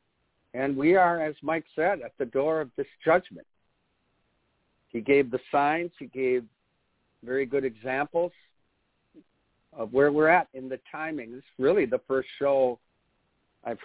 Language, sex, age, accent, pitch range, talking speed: English, male, 60-79, American, 120-150 Hz, 150 wpm